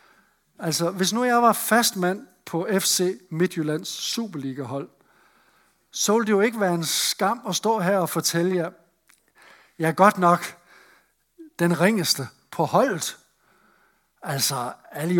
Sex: male